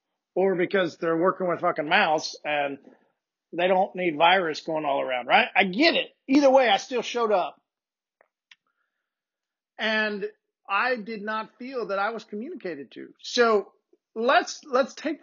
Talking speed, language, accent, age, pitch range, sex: 155 wpm, English, American, 50-69, 195-260 Hz, male